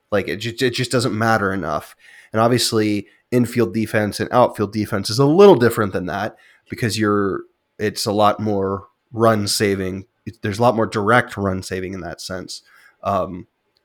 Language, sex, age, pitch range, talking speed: English, male, 20-39, 100-120 Hz, 175 wpm